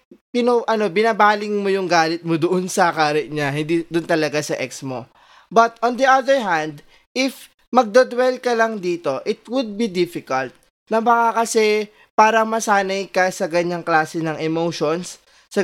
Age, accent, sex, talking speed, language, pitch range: 20-39, native, male, 165 wpm, Filipino, 160-230 Hz